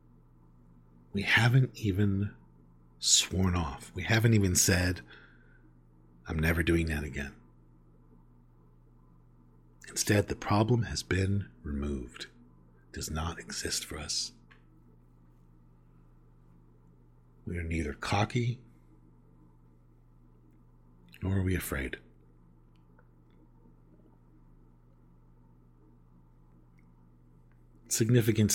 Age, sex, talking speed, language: 50-69, male, 75 wpm, English